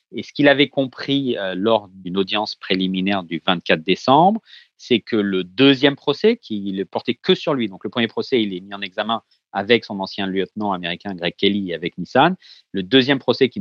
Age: 40-59